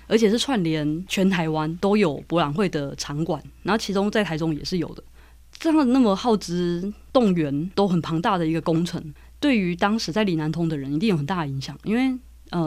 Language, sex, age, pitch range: Chinese, female, 20-39, 160-200 Hz